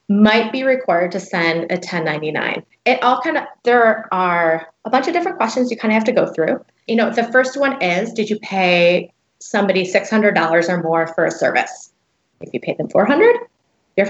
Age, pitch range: 20-39, 175-235 Hz